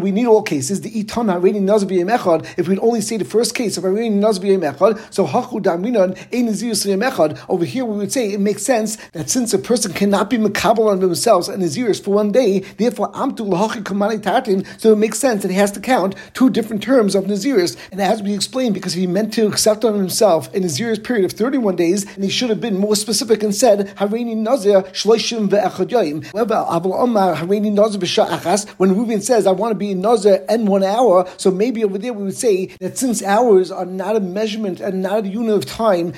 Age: 60-79